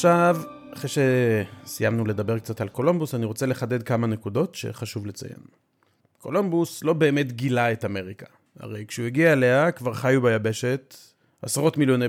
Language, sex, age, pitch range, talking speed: Hebrew, male, 30-49, 115-145 Hz, 145 wpm